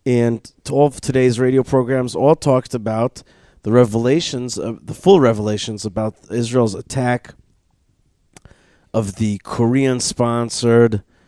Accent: American